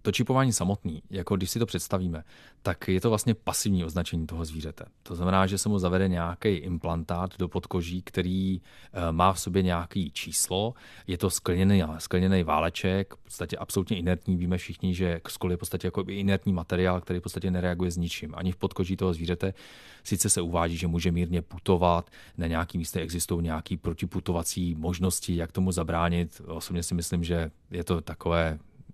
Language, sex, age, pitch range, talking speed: Czech, male, 30-49, 85-100 Hz, 180 wpm